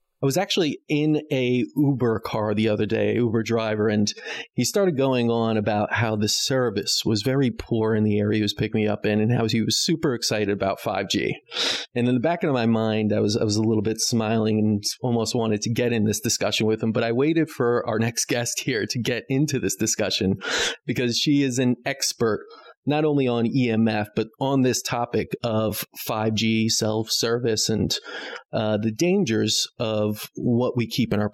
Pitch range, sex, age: 110-130 Hz, male, 30-49